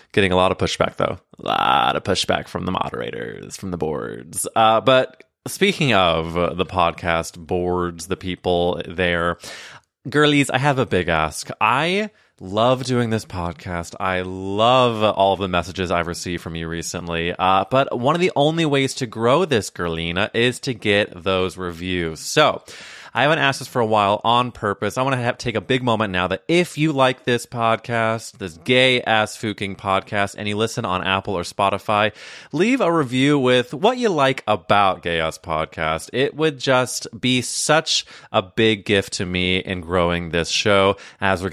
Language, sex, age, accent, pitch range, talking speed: English, male, 20-39, American, 90-120 Hz, 185 wpm